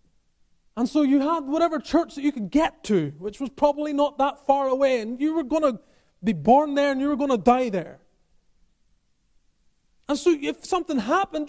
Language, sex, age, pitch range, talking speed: English, male, 30-49, 195-285 Hz, 200 wpm